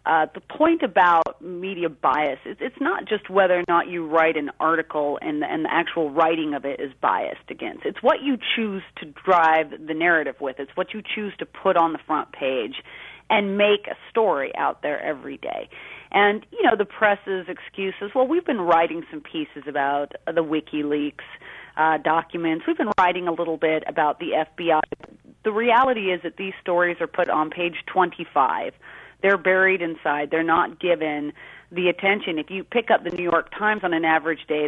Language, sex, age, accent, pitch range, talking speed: English, female, 30-49, American, 160-205 Hz, 200 wpm